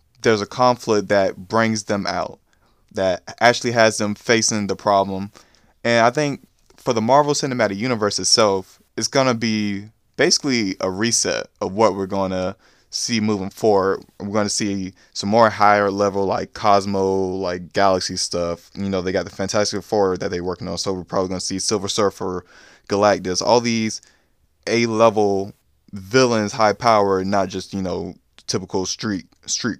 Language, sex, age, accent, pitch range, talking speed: English, male, 20-39, American, 95-110 Hz, 170 wpm